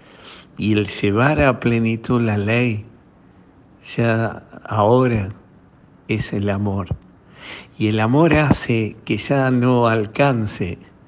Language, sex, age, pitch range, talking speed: Spanish, male, 60-79, 105-125 Hz, 110 wpm